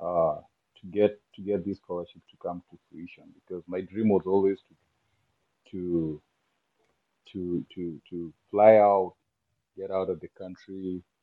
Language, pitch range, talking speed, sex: English, 90-110 Hz, 150 wpm, male